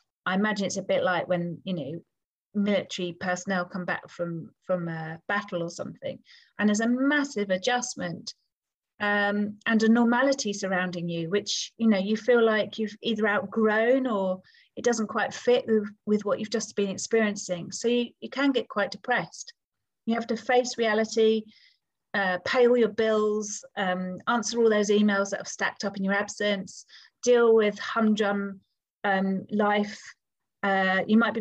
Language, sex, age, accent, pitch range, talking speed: English, female, 30-49, British, 190-225 Hz, 170 wpm